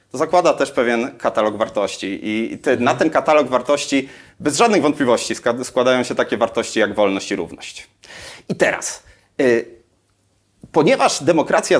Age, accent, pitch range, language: 30-49, native, 115-175 Hz, Polish